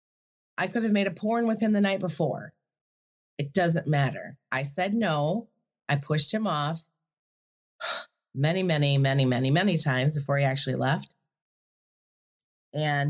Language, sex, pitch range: English, female, 135-165 Hz